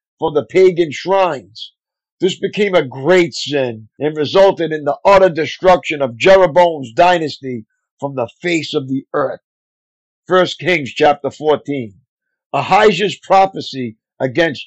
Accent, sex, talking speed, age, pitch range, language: American, male, 125 wpm, 50-69, 150-190 Hz, English